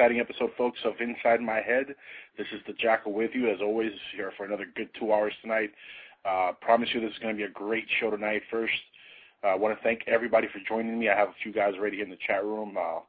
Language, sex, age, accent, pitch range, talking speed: English, male, 20-39, American, 100-115 Hz, 250 wpm